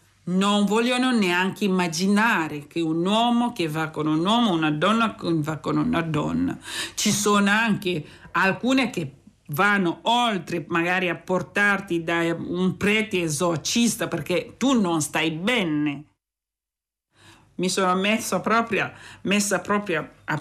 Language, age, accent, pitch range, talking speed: Italian, 50-69, native, 165-225 Hz, 130 wpm